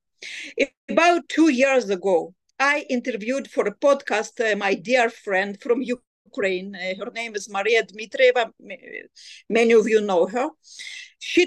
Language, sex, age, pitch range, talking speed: English, female, 50-69, 225-285 Hz, 140 wpm